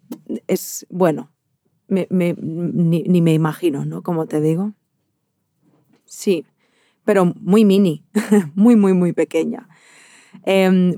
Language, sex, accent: Spanish, female, Spanish